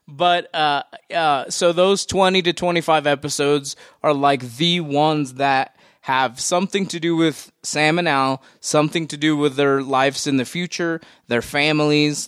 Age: 20-39